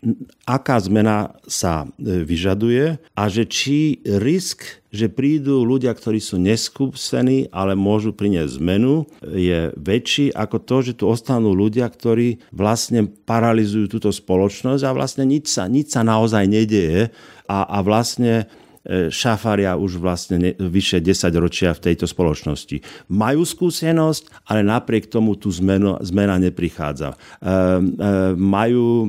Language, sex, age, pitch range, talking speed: Slovak, male, 50-69, 90-115 Hz, 125 wpm